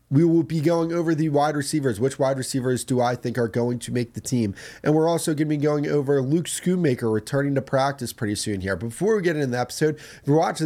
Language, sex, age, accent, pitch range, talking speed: English, male, 30-49, American, 115-155 Hz, 255 wpm